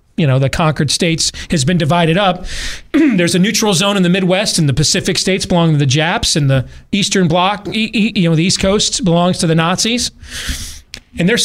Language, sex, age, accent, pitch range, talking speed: English, male, 40-59, American, 145-185 Hz, 205 wpm